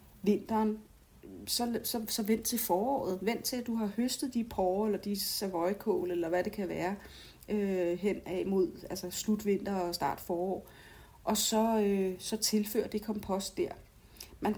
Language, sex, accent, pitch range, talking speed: Danish, female, native, 180-225 Hz, 175 wpm